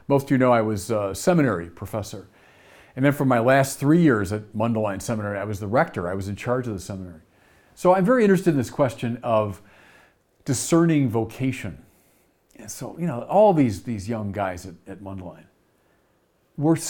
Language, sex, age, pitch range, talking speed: English, male, 50-69, 110-175 Hz, 190 wpm